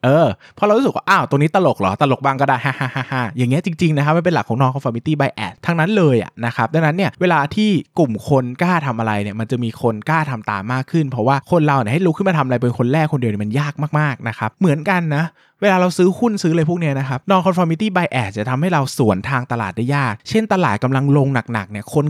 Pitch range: 120-160 Hz